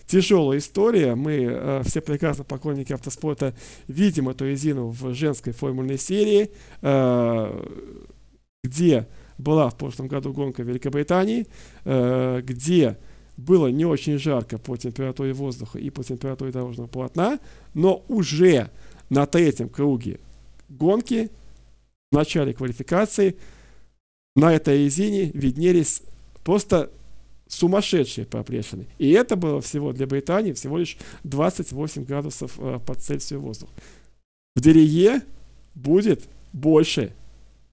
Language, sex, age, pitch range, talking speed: Russian, male, 40-59, 130-160 Hz, 110 wpm